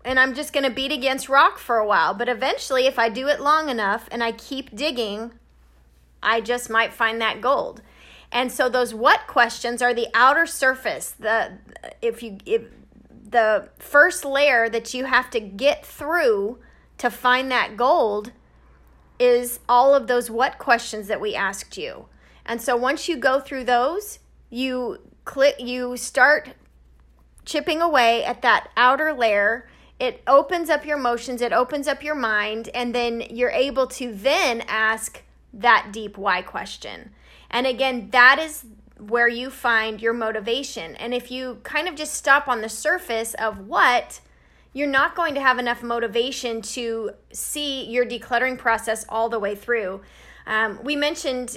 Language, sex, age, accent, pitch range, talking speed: English, female, 30-49, American, 225-270 Hz, 165 wpm